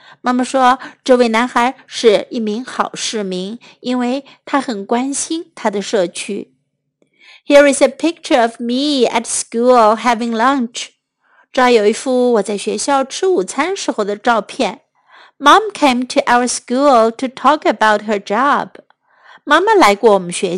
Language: Chinese